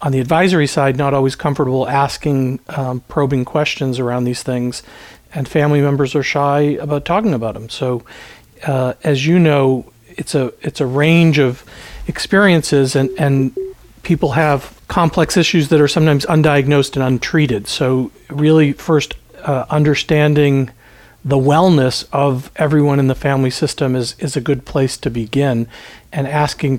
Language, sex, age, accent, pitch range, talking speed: English, male, 40-59, American, 125-150 Hz, 155 wpm